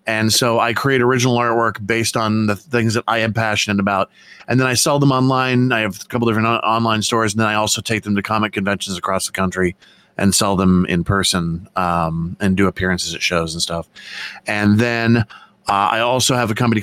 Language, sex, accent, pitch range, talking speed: English, male, American, 100-125 Hz, 220 wpm